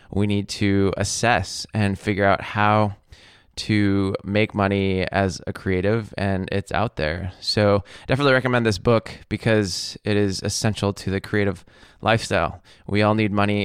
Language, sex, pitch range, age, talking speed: English, male, 95-115 Hz, 20-39, 155 wpm